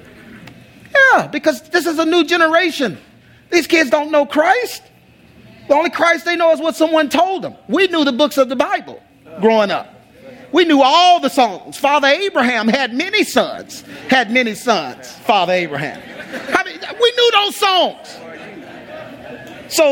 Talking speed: 155 wpm